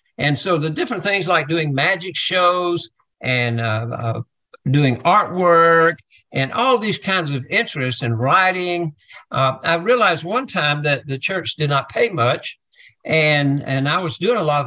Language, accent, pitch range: English, American, 130-175 Hz